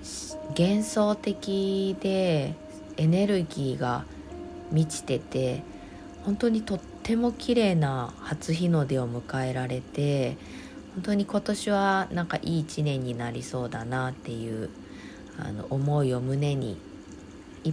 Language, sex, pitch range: Japanese, female, 130-195 Hz